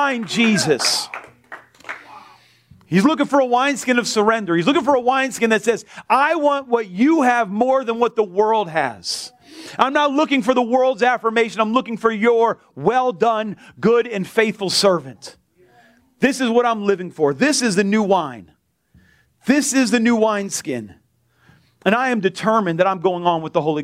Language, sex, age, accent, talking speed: English, male, 40-59, American, 175 wpm